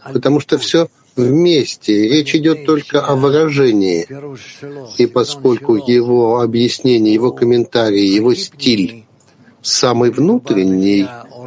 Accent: native